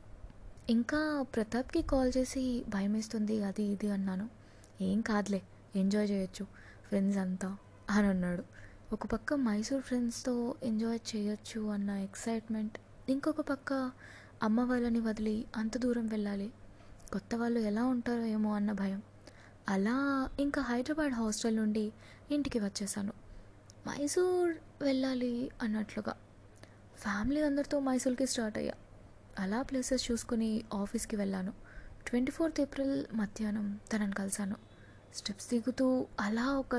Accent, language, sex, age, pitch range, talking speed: native, Telugu, female, 20-39, 200-250 Hz, 115 wpm